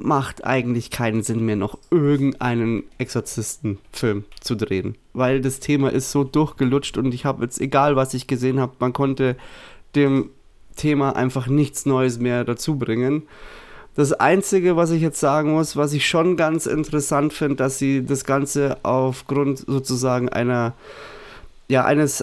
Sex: male